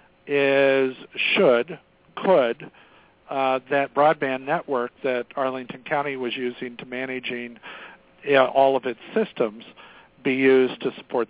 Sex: male